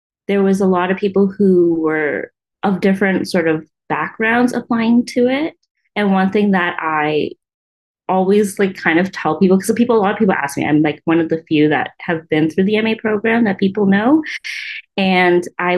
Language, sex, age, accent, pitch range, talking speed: English, female, 20-39, American, 160-205 Hz, 200 wpm